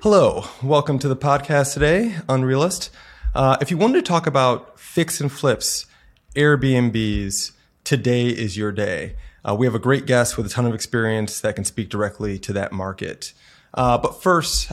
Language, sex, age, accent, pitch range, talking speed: English, male, 20-39, American, 105-130 Hz, 175 wpm